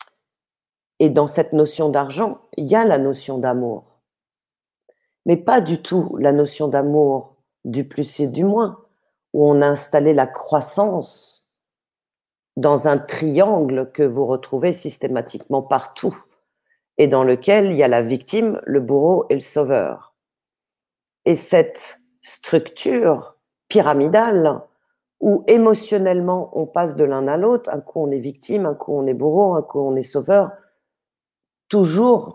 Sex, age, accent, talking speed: female, 40-59, French, 145 wpm